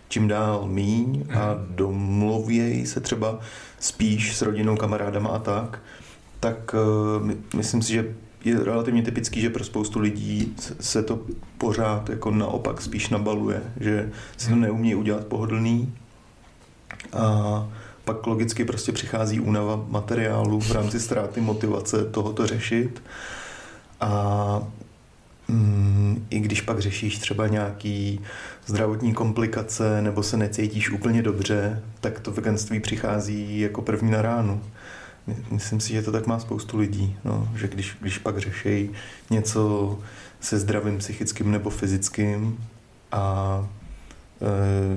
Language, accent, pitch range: Czech, native, 105-115 Hz